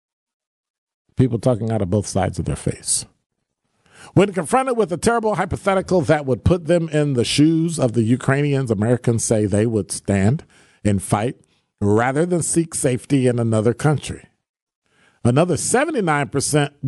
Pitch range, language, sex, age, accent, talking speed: 105-145 Hz, English, male, 50-69, American, 145 wpm